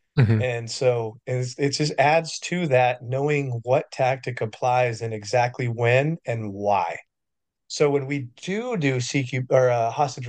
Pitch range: 120-140 Hz